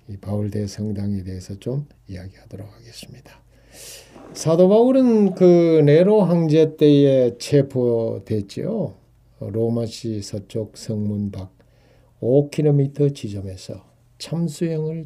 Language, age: Korean, 60-79